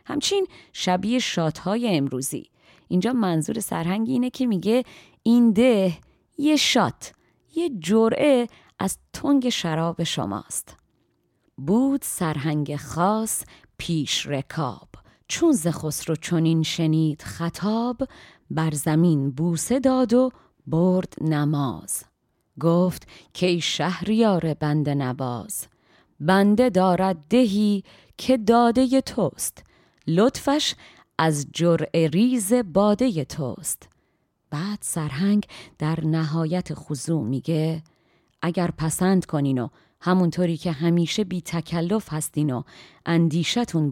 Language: Persian